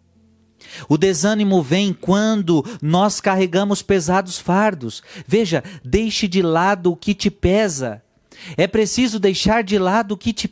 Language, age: Portuguese, 40-59